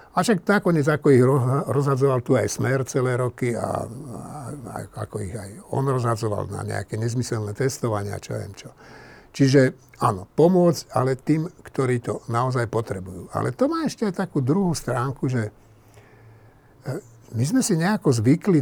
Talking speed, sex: 150 wpm, male